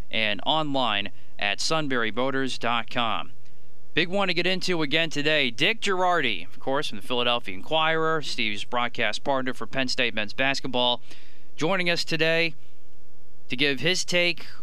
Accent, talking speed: American, 140 wpm